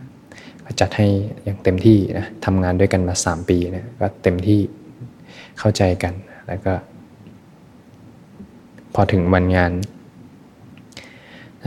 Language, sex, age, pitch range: Thai, male, 20-39, 90-105 Hz